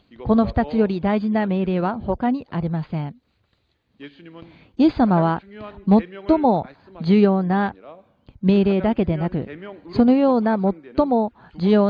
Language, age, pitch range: Japanese, 50-69, 170-235 Hz